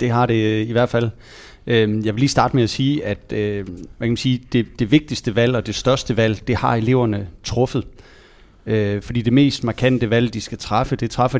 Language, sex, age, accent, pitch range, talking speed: Danish, male, 30-49, native, 105-125 Hz, 185 wpm